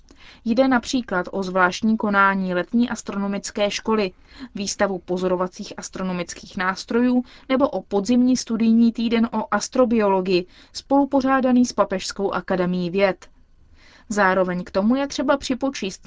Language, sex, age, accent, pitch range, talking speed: Czech, female, 20-39, native, 190-240 Hz, 110 wpm